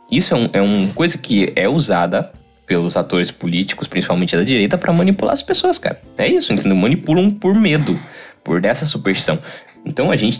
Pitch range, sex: 95-155 Hz, male